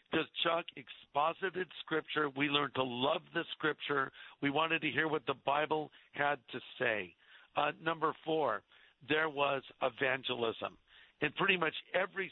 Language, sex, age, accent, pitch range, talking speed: English, male, 50-69, American, 135-160 Hz, 145 wpm